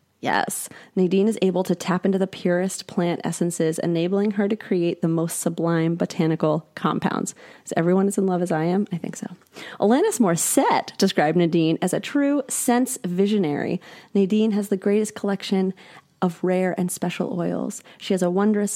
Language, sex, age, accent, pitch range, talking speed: English, female, 30-49, American, 170-200 Hz, 180 wpm